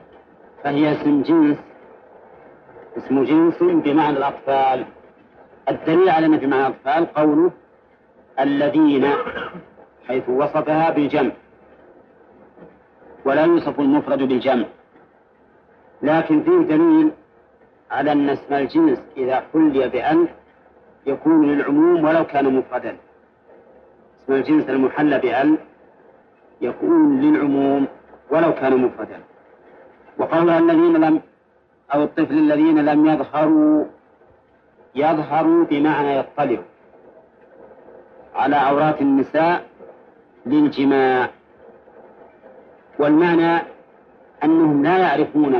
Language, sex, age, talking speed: Arabic, male, 50-69, 80 wpm